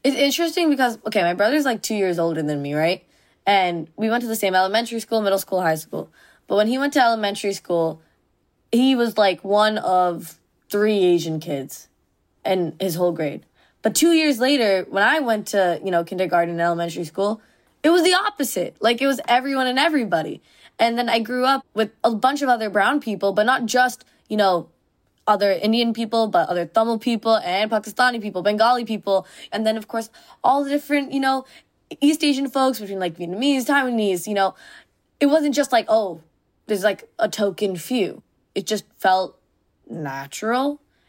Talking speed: 190 wpm